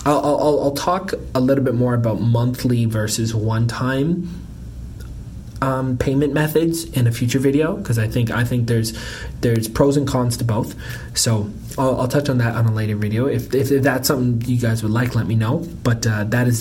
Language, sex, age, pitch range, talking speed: English, male, 20-39, 110-125 Hz, 205 wpm